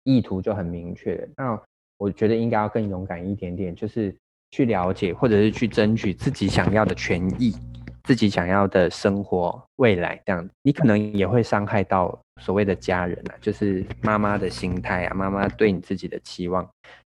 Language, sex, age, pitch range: Chinese, male, 20-39, 95-115 Hz